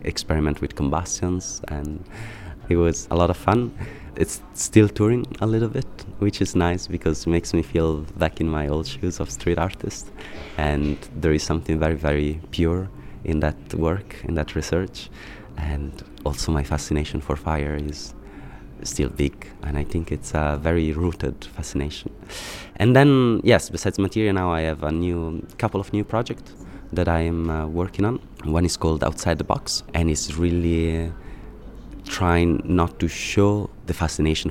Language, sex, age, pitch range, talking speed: Czech, male, 20-39, 75-90 Hz, 170 wpm